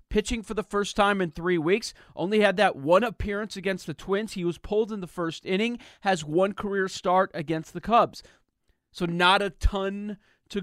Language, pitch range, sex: English, 145-185 Hz, male